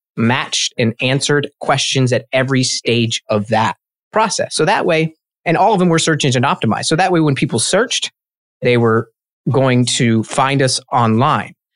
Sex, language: male, English